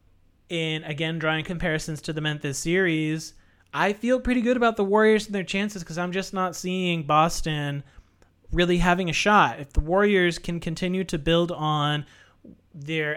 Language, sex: English, male